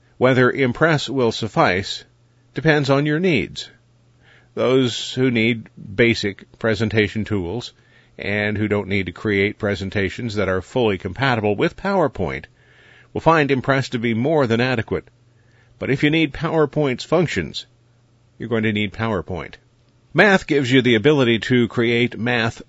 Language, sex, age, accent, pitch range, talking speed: English, male, 50-69, American, 105-130 Hz, 145 wpm